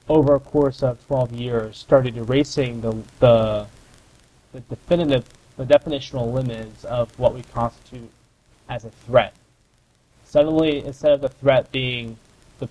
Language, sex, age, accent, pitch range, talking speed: English, male, 20-39, American, 115-130 Hz, 135 wpm